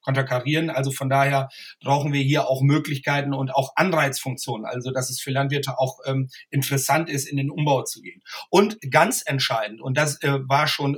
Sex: male